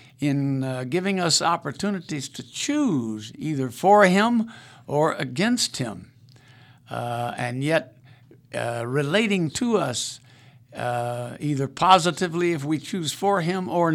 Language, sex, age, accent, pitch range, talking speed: English, male, 60-79, American, 125-160 Hz, 125 wpm